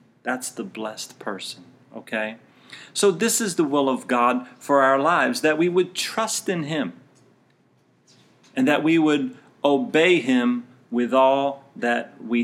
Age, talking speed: 40-59, 150 wpm